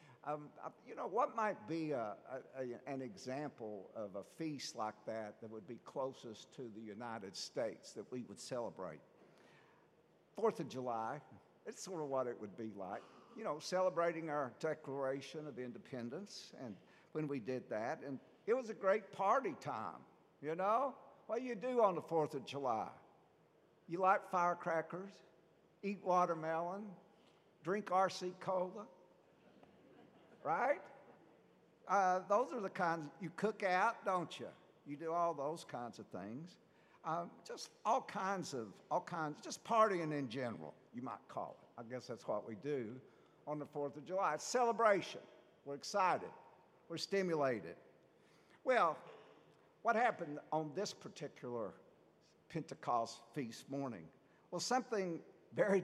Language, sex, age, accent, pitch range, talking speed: English, male, 60-79, American, 135-190 Hz, 150 wpm